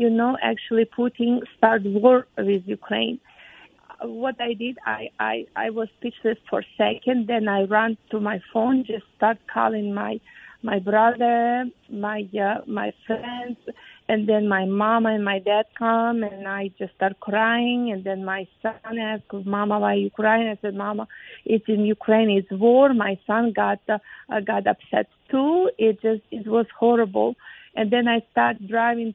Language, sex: English, female